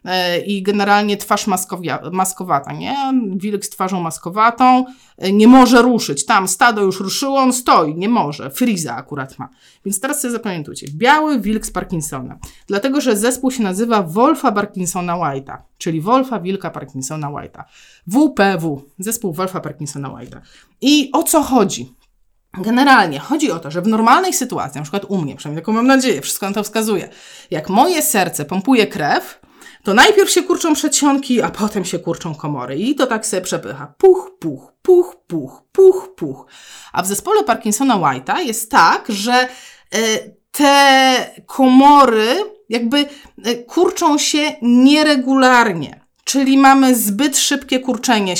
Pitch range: 185-270 Hz